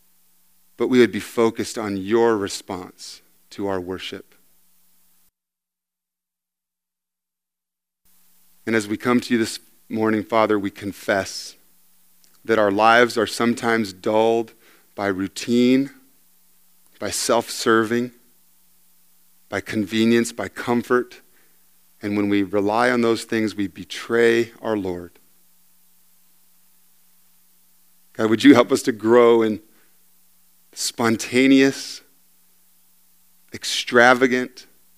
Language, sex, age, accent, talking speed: English, male, 40-59, American, 100 wpm